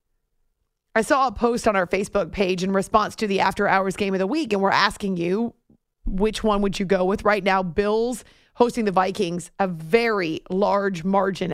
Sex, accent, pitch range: female, American, 200-275 Hz